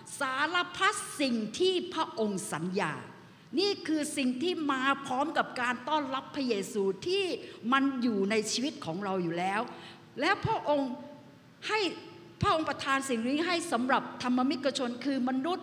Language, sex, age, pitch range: Thai, female, 60-79, 240-310 Hz